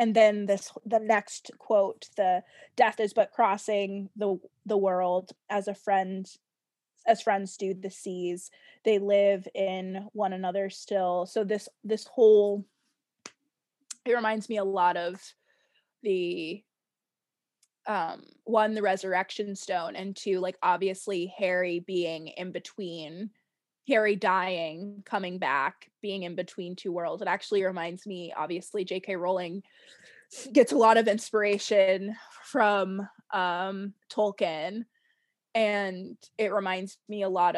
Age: 20-39